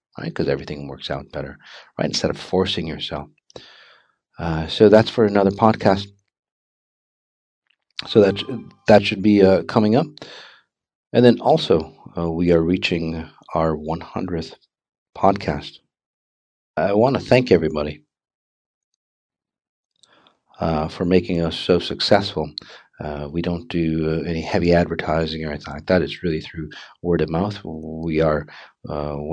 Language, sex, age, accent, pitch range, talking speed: English, male, 40-59, American, 80-100 Hz, 140 wpm